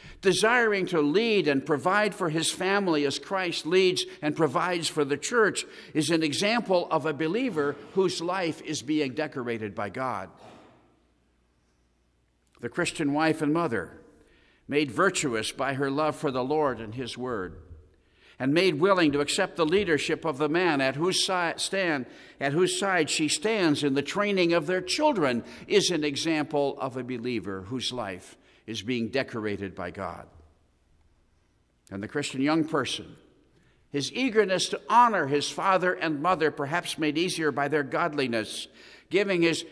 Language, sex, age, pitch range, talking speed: English, male, 50-69, 125-175 Hz, 155 wpm